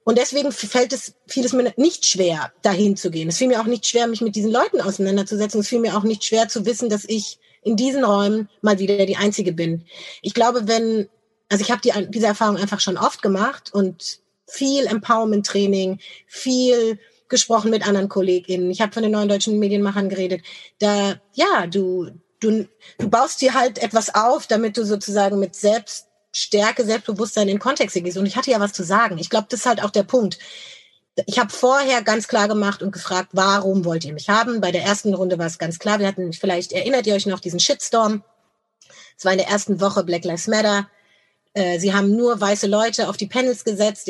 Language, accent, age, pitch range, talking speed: German, German, 30-49, 195-225 Hz, 205 wpm